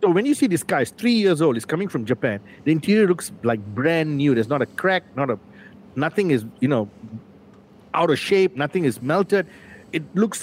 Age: 50-69